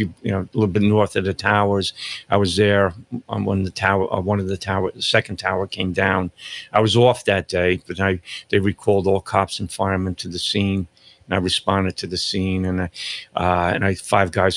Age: 50-69